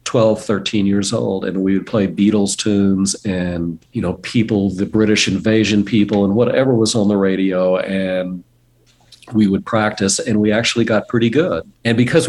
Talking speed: 175 wpm